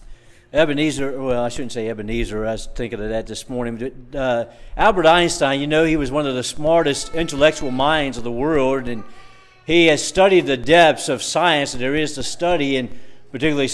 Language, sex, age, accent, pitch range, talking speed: English, male, 50-69, American, 135-170 Hz, 190 wpm